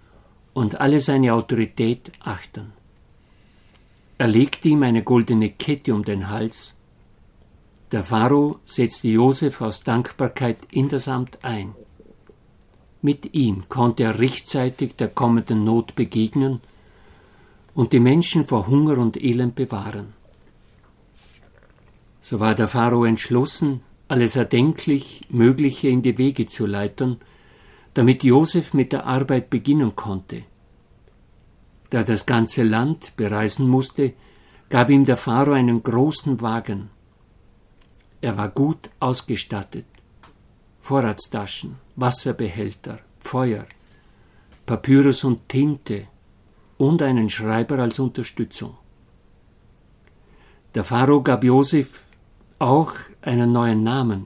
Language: German